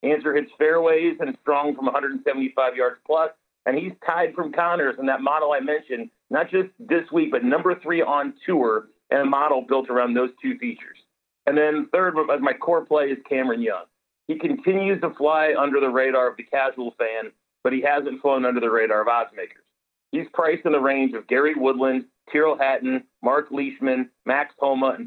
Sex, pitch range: male, 135-185 Hz